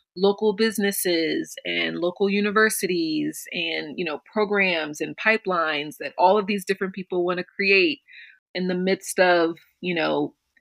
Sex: female